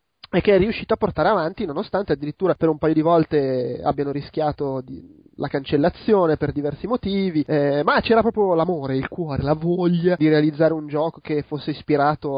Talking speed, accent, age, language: 180 wpm, native, 20-39, Italian